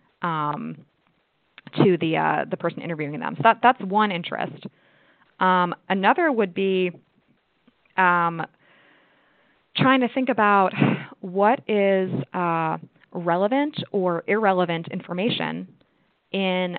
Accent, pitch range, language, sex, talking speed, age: American, 170-205 Hz, English, female, 105 wpm, 20-39